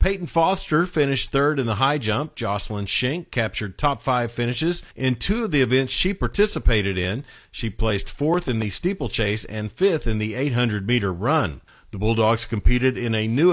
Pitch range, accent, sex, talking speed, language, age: 110-150 Hz, American, male, 175 wpm, English, 50-69